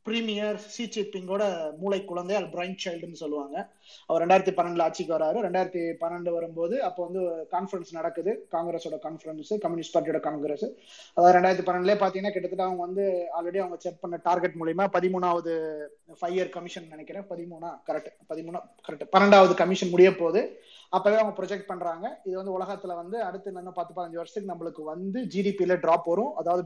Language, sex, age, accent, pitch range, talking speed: Tamil, male, 20-39, native, 170-205 Hz, 160 wpm